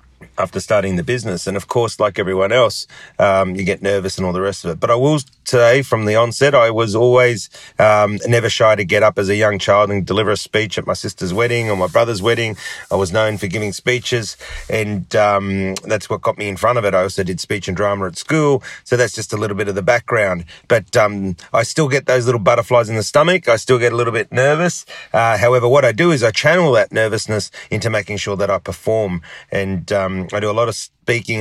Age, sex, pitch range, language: 30-49, male, 100-120 Hz, English